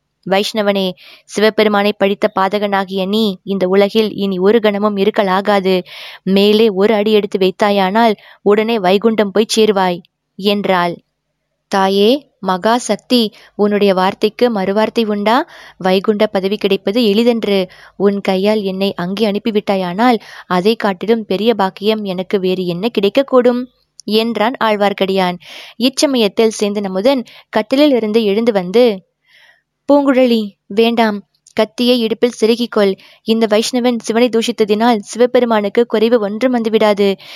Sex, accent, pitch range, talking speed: female, native, 195-225 Hz, 105 wpm